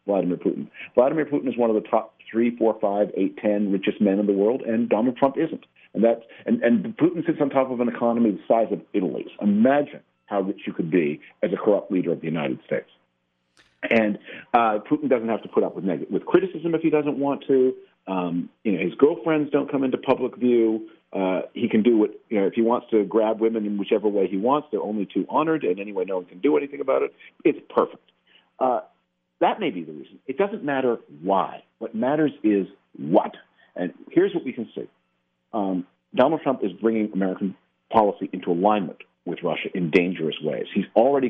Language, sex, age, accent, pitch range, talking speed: English, male, 50-69, American, 95-145 Hz, 215 wpm